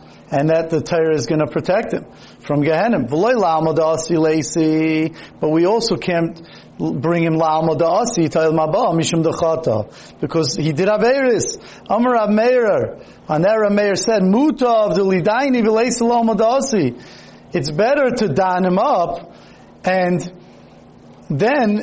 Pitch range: 160-210 Hz